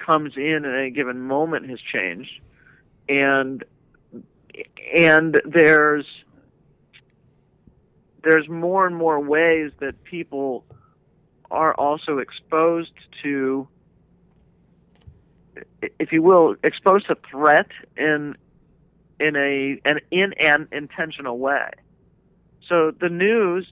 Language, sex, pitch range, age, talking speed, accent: English, male, 140-160 Hz, 50-69, 100 wpm, American